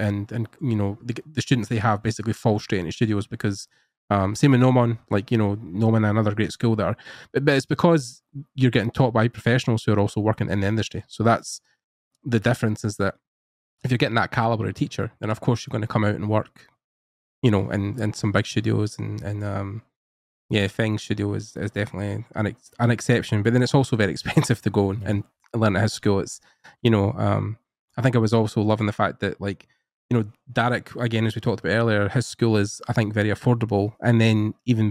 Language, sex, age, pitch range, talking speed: English, male, 20-39, 105-120 Hz, 230 wpm